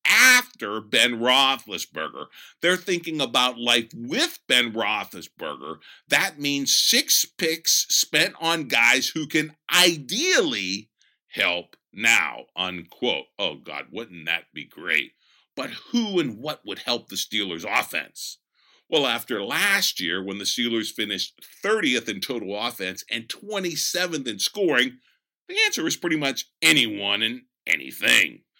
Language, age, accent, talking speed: English, 50-69, American, 130 wpm